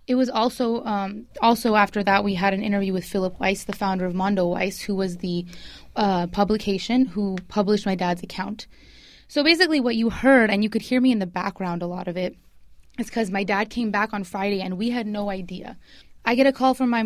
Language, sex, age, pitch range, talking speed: English, female, 20-39, 195-235 Hz, 230 wpm